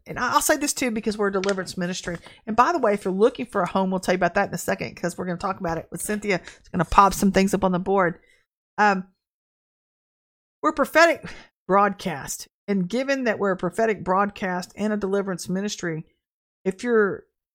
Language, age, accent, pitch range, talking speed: English, 50-69, American, 185-220 Hz, 220 wpm